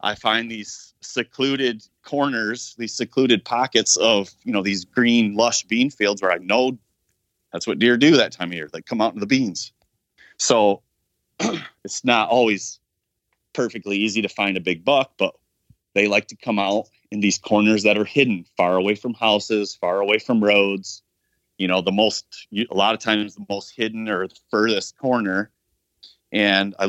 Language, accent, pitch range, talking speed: English, American, 100-115 Hz, 180 wpm